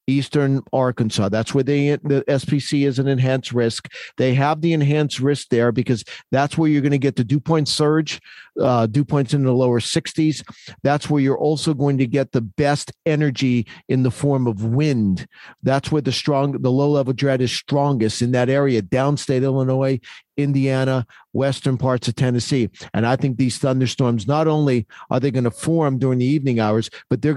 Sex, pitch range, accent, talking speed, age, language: male, 130-150 Hz, American, 190 wpm, 50-69, English